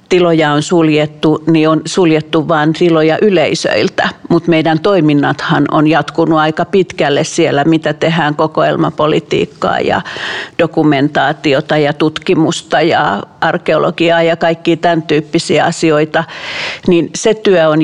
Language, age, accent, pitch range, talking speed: Finnish, 50-69, native, 155-175 Hz, 120 wpm